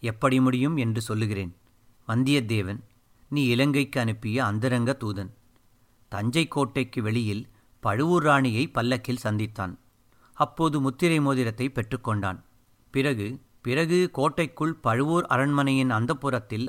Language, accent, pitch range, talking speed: Tamil, native, 115-140 Hz, 100 wpm